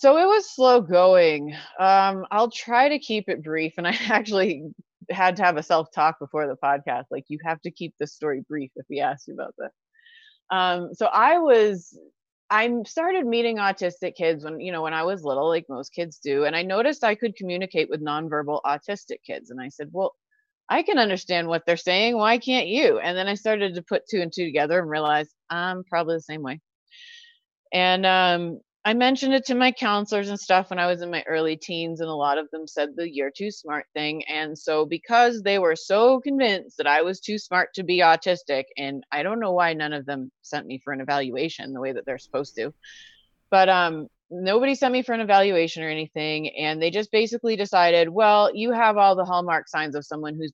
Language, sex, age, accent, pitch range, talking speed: English, female, 30-49, American, 155-215 Hz, 220 wpm